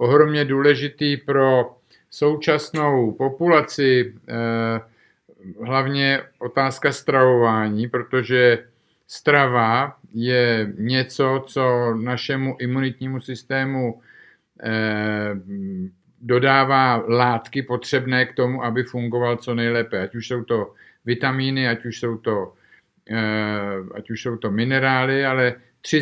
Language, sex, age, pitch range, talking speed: Czech, male, 50-69, 115-130 Hz, 90 wpm